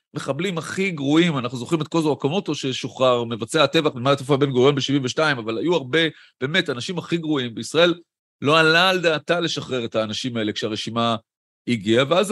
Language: Hebrew